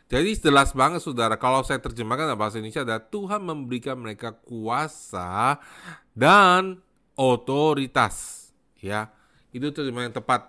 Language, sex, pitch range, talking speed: Indonesian, male, 110-160 Hz, 120 wpm